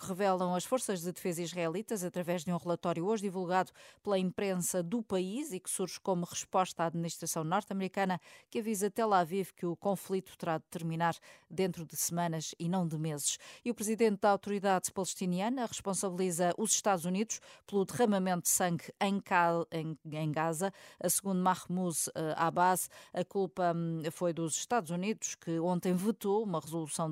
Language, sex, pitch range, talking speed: Portuguese, female, 165-200 Hz, 155 wpm